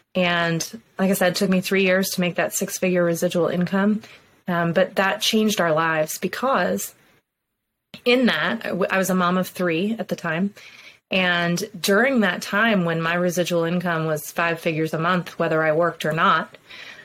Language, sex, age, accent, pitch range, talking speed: English, female, 20-39, American, 170-195 Hz, 180 wpm